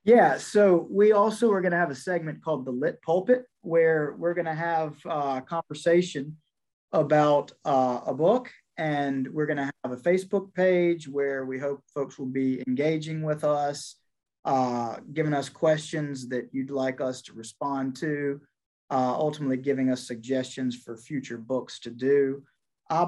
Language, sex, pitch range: English, male, 130-160 Hz